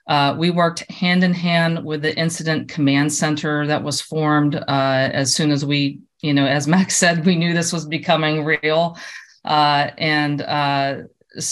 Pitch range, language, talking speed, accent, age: 145-165 Hz, English, 170 wpm, American, 40-59